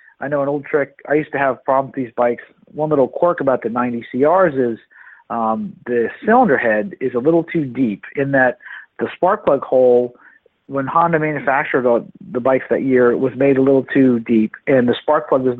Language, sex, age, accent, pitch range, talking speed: English, male, 40-59, American, 110-140 Hz, 215 wpm